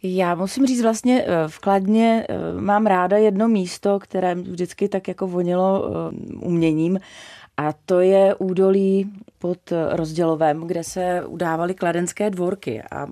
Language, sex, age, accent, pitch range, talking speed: Czech, female, 30-49, native, 165-185 Hz, 130 wpm